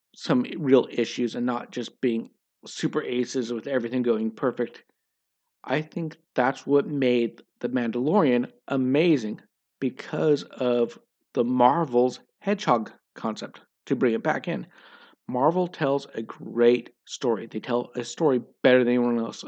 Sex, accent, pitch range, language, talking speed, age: male, American, 125-160 Hz, English, 140 wpm, 50-69